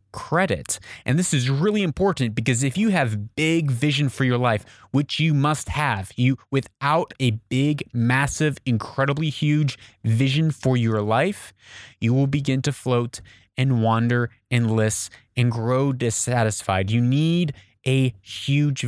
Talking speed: 145 wpm